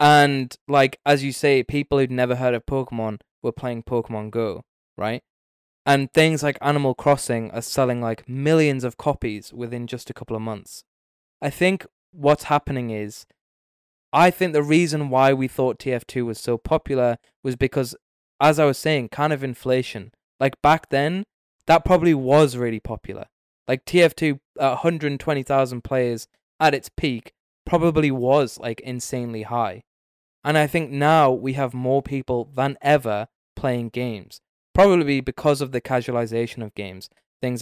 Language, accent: English, British